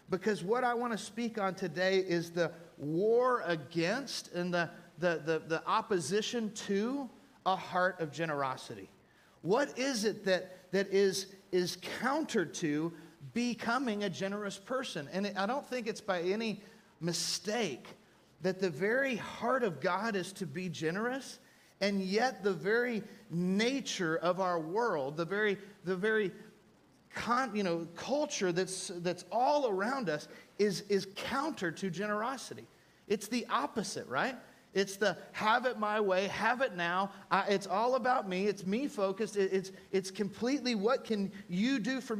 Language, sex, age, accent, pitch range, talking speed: English, male, 40-59, American, 185-230 Hz, 155 wpm